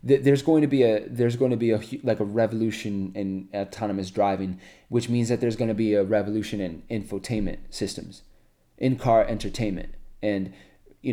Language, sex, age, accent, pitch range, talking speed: English, male, 20-39, American, 95-120 Hz, 180 wpm